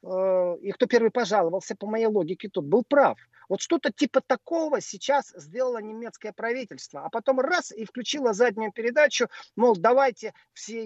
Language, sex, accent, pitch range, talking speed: Russian, male, native, 170-235 Hz, 155 wpm